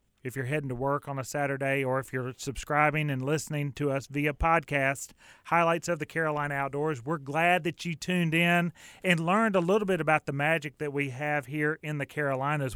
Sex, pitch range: male, 135-165 Hz